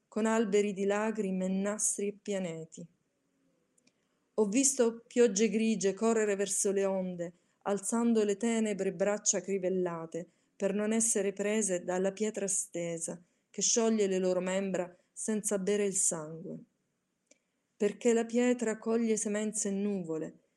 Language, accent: Italian, native